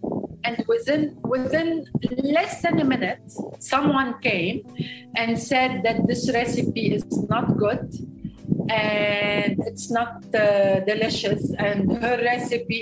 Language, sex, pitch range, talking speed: English, female, 200-255 Hz, 115 wpm